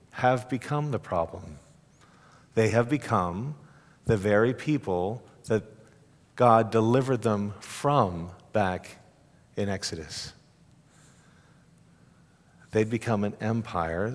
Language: English